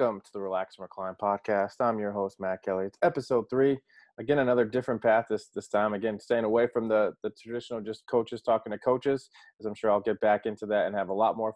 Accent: American